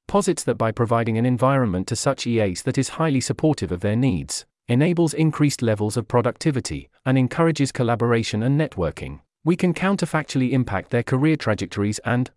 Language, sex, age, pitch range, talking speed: English, male, 40-59, 110-145 Hz, 165 wpm